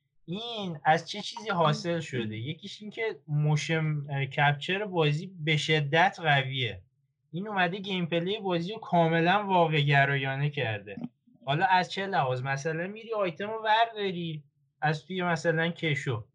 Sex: male